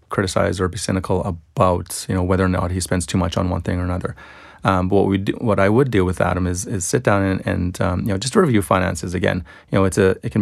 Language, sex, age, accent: English, male, 30-49, American